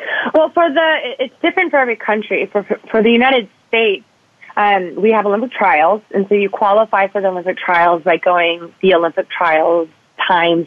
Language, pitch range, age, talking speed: English, 175-215 Hz, 30-49, 180 wpm